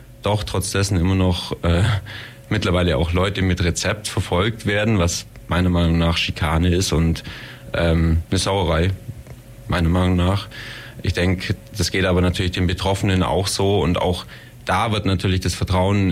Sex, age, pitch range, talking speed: male, 30-49, 90-110 Hz, 155 wpm